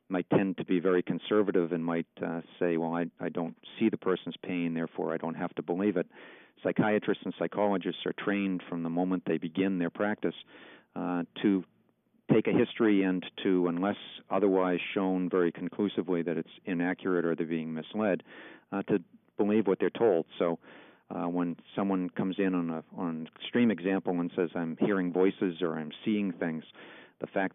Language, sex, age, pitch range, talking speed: English, male, 50-69, 85-95 Hz, 185 wpm